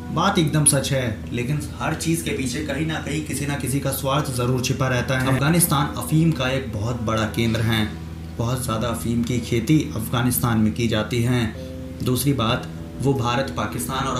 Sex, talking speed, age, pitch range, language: male, 190 wpm, 20-39, 115-145 Hz, Hindi